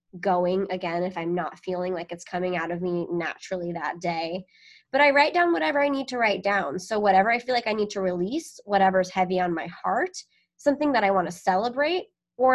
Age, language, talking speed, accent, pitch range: 20-39, English, 220 wpm, American, 185-245 Hz